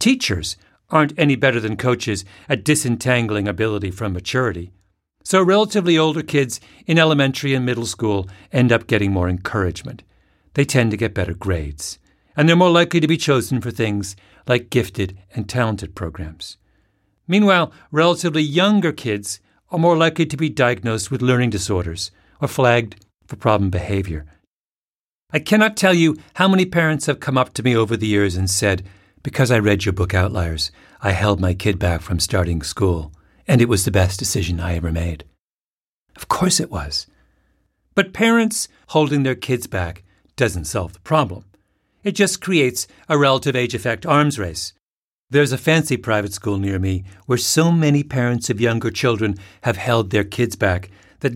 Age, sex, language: 50-69, male, English